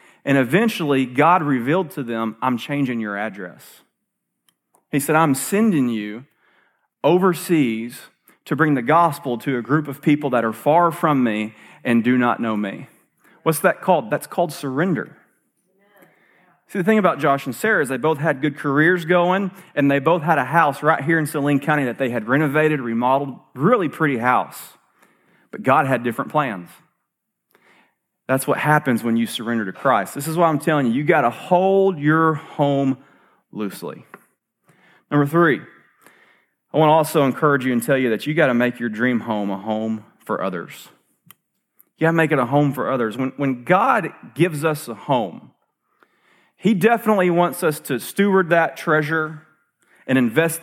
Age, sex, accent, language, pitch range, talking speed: 30-49, male, American, English, 125-165 Hz, 175 wpm